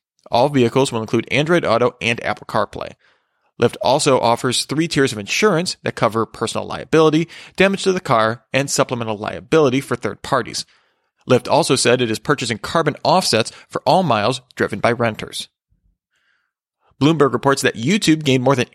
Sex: male